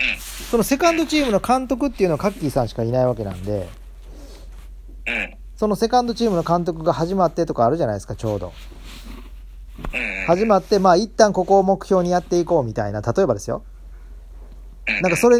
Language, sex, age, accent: Japanese, male, 40-59, native